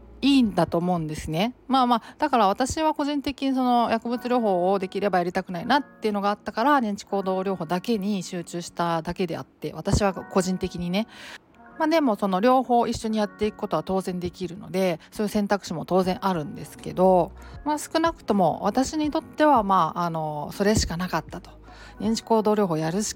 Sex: female